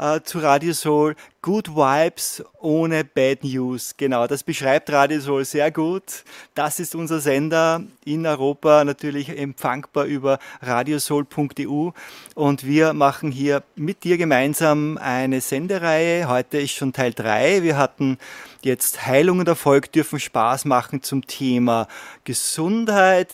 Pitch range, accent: 140-170 Hz, German